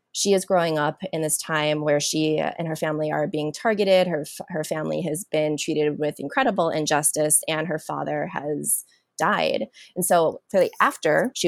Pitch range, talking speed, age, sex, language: 155-205 Hz, 185 wpm, 20-39, female, English